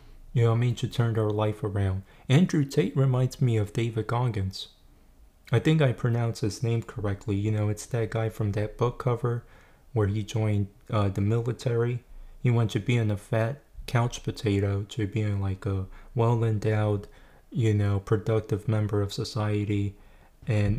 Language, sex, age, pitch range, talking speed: English, male, 20-39, 105-120 Hz, 165 wpm